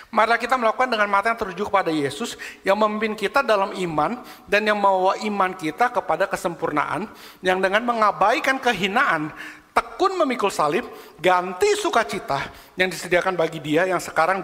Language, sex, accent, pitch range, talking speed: English, male, Indonesian, 190-305 Hz, 150 wpm